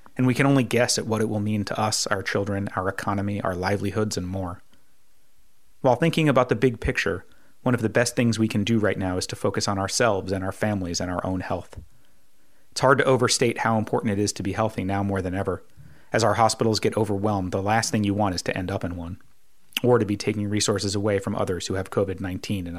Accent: American